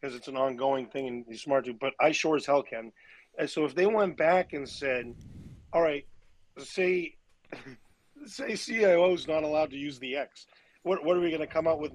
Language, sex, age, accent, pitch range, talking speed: English, male, 40-59, American, 135-165 Hz, 215 wpm